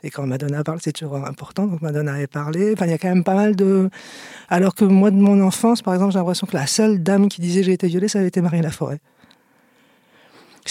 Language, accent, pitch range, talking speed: French, French, 165-195 Hz, 260 wpm